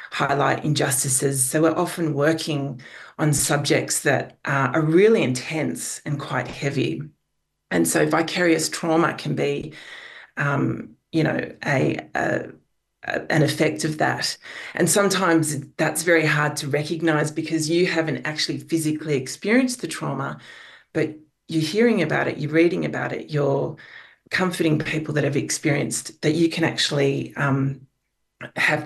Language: English